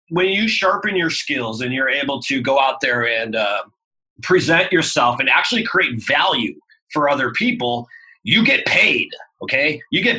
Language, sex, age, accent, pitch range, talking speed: English, male, 30-49, American, 130-185 Hz, 170 wpm